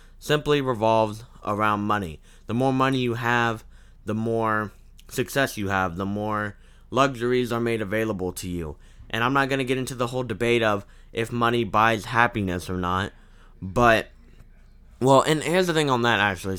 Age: 20-39